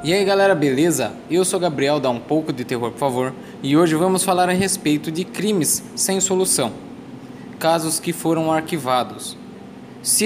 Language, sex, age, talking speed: Portuguese, male, 20-39, 170 wpm